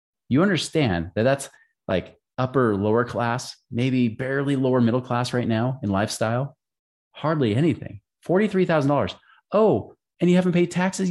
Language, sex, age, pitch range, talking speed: English, male, 30-49, 110-160 Hz, 140 wpm